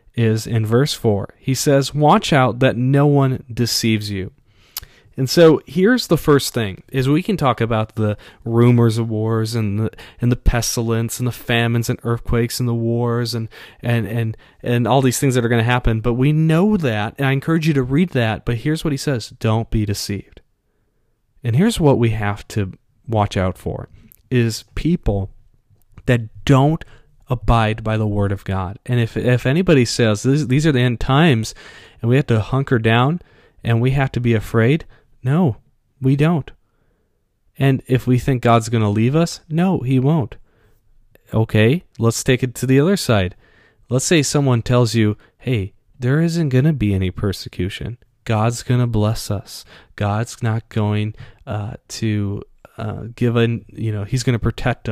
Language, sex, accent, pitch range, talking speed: English, male, American, 110-135 Hz, 185 wpm